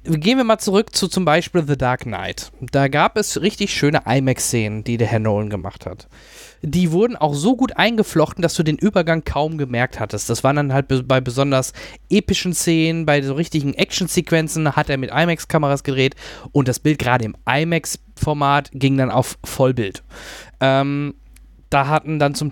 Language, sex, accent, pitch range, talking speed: German, male, German, 130-180 Hz, 180 wpm